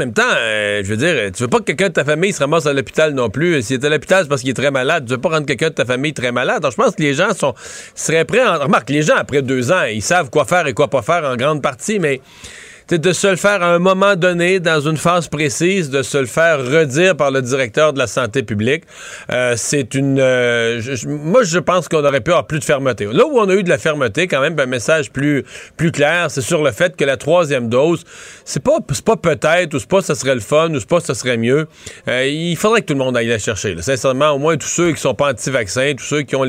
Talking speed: 290 wpm